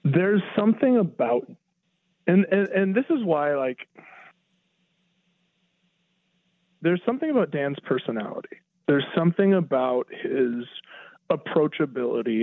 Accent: American